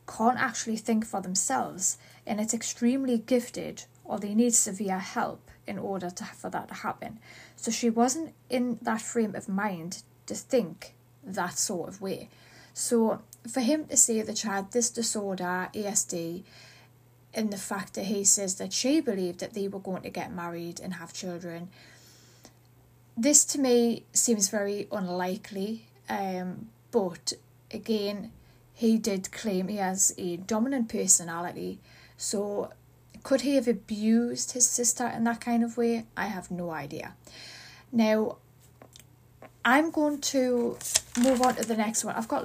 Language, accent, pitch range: English, British, 180-235 Hz